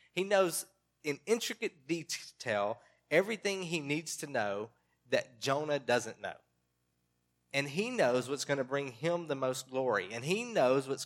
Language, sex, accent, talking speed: English, male, American, 155 wpm